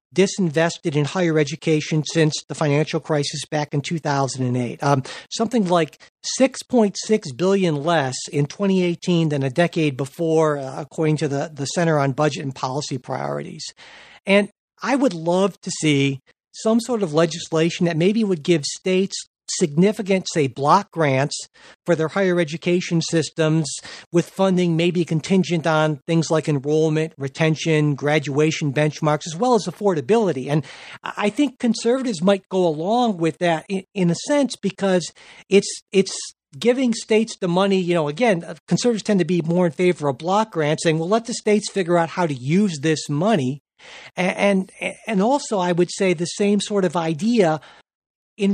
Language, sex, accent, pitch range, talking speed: English, male, American, 155-195 Hz, 160 wpm